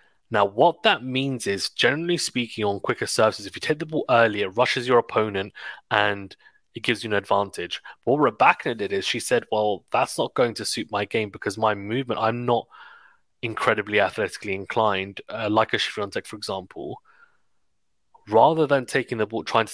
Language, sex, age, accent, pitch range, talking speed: English, male, 20-39, British, 100-125 Hz, 190 wpm